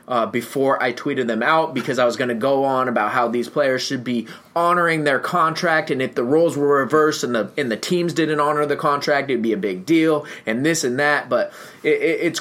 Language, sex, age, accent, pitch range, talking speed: English, male, 20-39, American, 125-160 Hz, 245 wpm